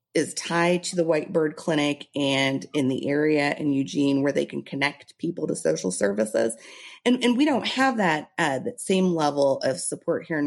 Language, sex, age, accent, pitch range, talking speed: English, female, 30-49, American, 135-180 Hz, 200 wpm